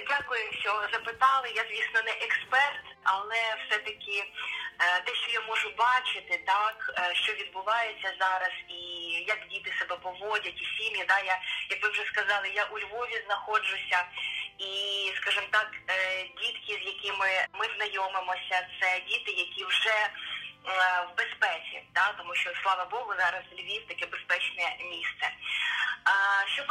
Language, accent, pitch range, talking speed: Ukrainian, native, 195-245 Hz, 135 wpm